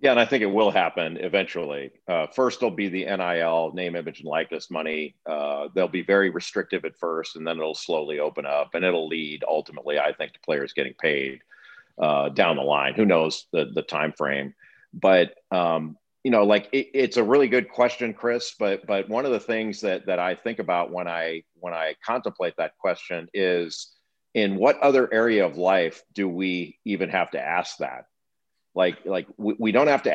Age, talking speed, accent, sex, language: 40-59, 205 wpm, American, male, English